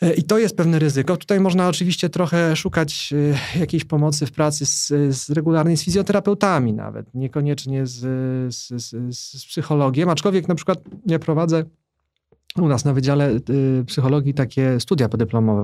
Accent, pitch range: native, 135-170 Hz